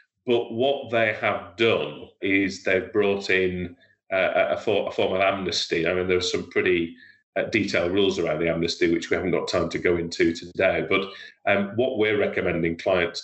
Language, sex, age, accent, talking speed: English, male, 30-49, British, 180 wpm